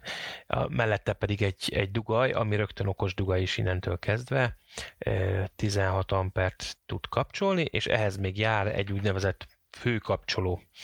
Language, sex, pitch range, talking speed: Hungarian, male, 95-110 Hz, 125 wpm